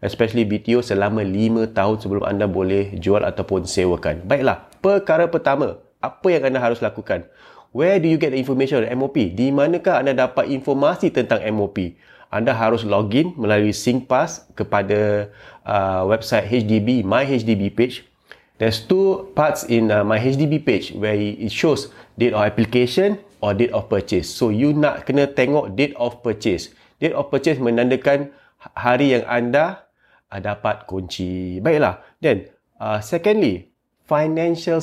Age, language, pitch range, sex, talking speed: 30-49, English, 110-150 Hz, male, 150 wpm